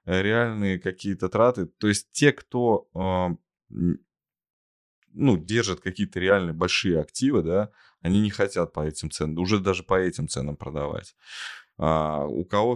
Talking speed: 140 wpm